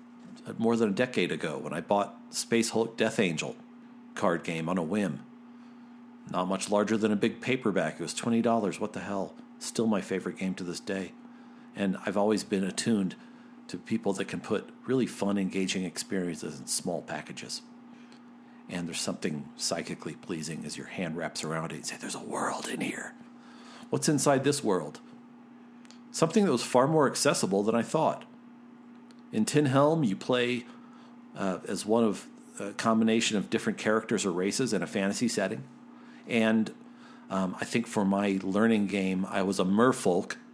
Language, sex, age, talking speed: English, male, 50-69, 175 wpm